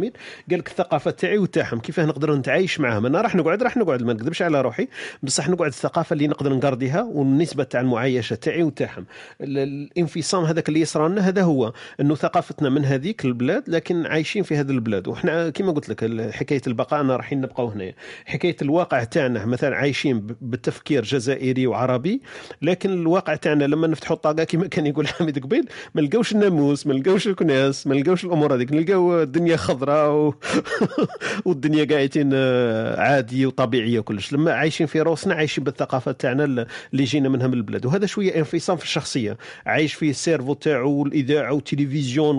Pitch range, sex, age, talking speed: 135-170 Hz, male, 40-59, 155 wpm